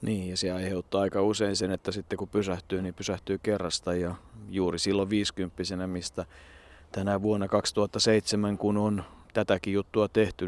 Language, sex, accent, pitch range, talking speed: Finnish, male, native, 90-110 Hz, 155 wpm